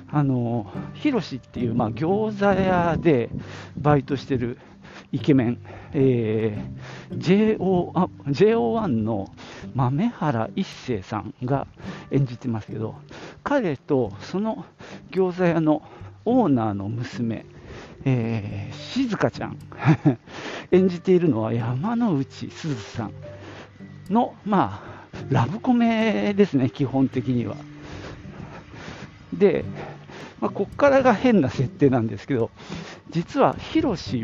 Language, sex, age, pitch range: Japanese, male, 50-69, 110-175 Hz